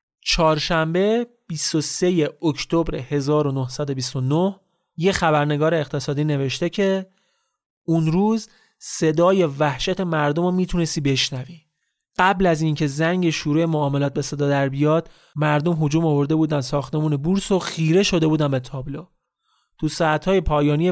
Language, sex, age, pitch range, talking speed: Persian, male, 30-49, 145-180 Hz, 120 wpm